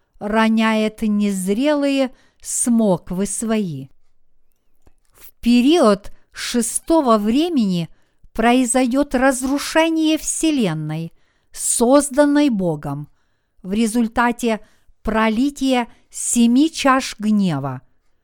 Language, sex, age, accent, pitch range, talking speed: Russian, female, 50-69, native, 190-270 Hz, 65 wpm